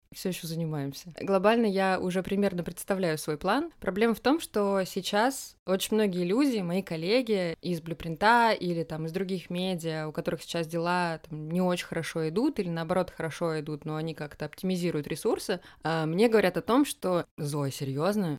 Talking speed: 175 wpm